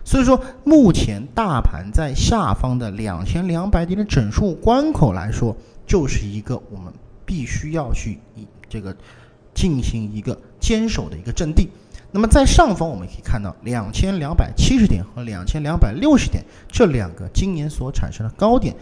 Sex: male